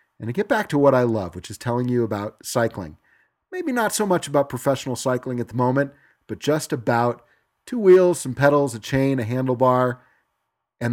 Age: 40-59